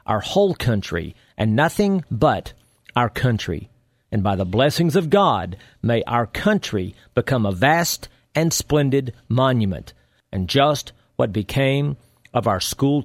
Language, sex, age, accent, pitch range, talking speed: English, male, 50-69, American, 115-160 Hz, 140 wpm